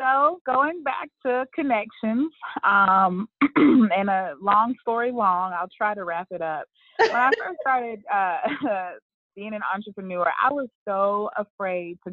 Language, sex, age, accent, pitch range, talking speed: English, female, 20-39, American, 175-230 Hz, 150 wpm